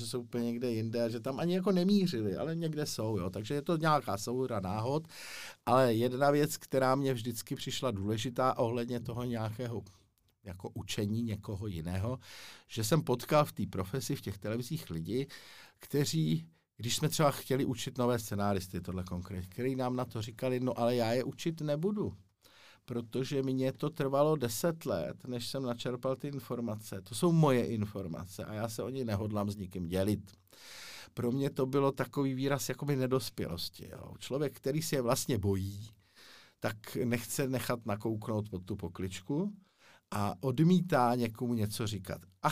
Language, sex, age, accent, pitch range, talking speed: Czech, male, 50-69, native, 105-135 Hz, 165 wpm